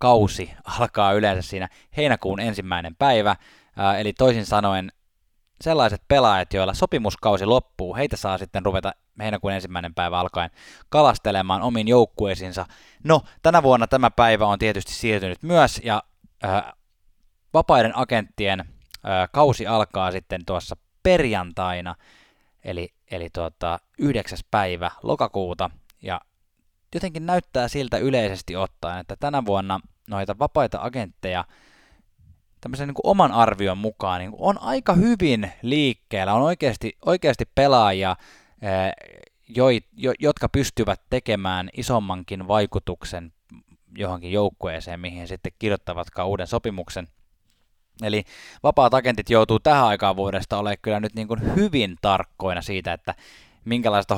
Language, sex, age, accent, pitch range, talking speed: Finnish, male, 20-39, native, 95-115 Hz, 115 wpm